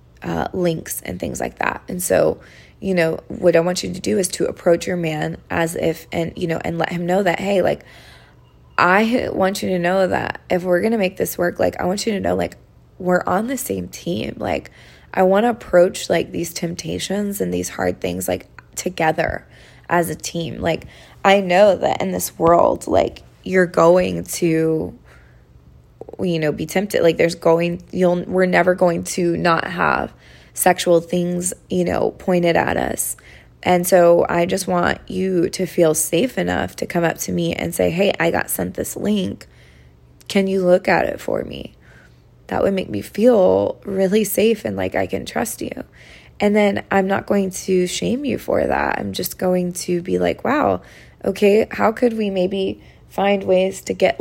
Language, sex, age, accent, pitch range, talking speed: English, female, 20-39, American, 155-190 Hz, 195 wpm